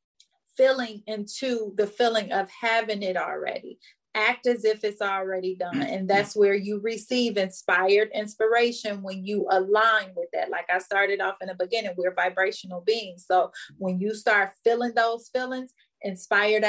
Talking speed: 160 wpm